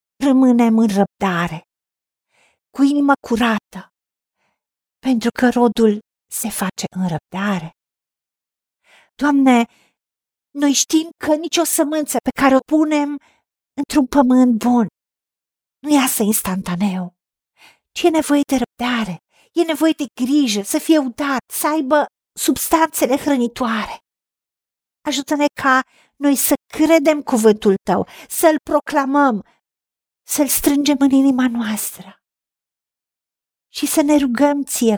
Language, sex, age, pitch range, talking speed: Romanian, female, 50-69, 230-310 Hz, 110 wpm